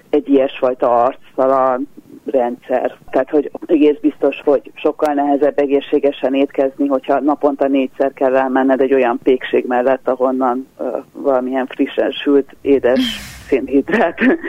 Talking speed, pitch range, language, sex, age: 120 wpm, 135-170 Hz, Hungarian, female, 30-49